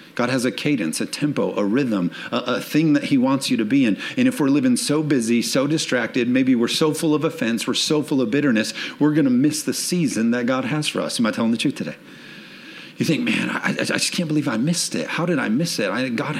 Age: 40-59